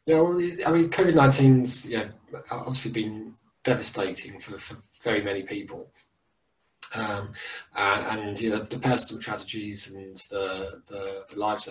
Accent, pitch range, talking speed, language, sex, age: British, 100-125 Hz, 150 wpm, English, male, 20-39